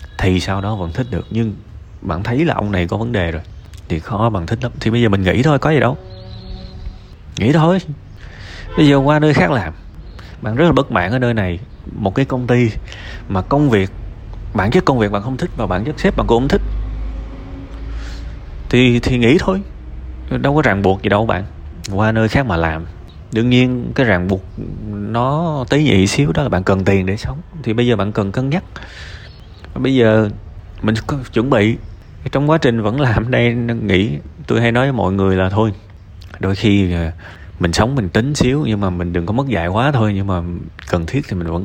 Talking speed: 215 wpm